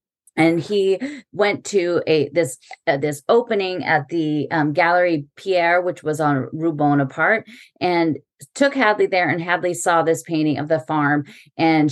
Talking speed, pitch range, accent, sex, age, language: 160 wpm, 150-180 Hz, American, female, 30-49, English